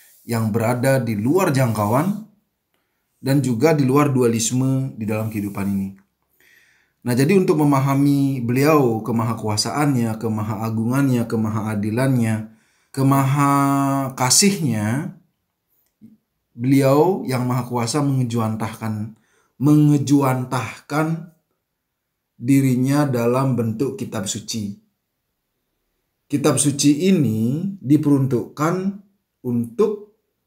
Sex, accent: male, native